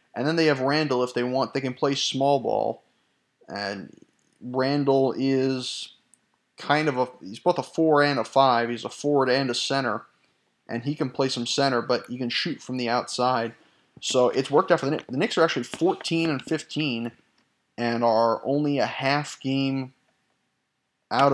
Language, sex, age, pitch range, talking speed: English, male, 20-39, 120-140 Hz, 185 wpm